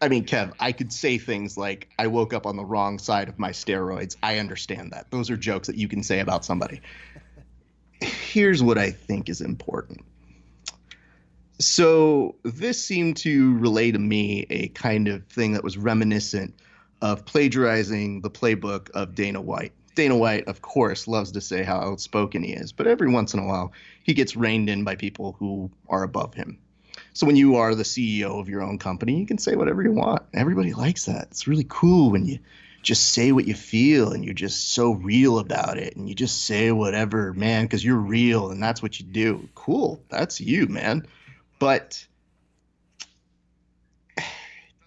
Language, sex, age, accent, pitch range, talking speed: English, male, 30-49, American, 95-120 Hz, 185 wpm